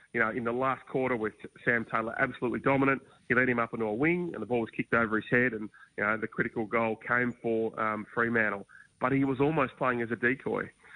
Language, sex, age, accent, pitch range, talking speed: English, male, 30-49, Australian, 110-125 Hz, 240 wpm